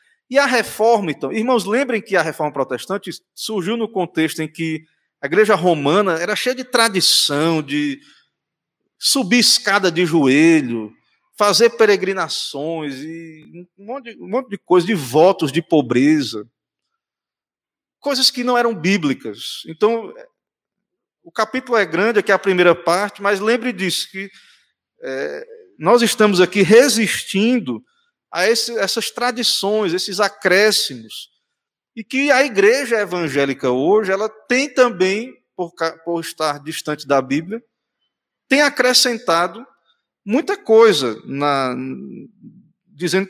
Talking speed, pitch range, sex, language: 120 wpm, 160-235 Hz, male, Portuguese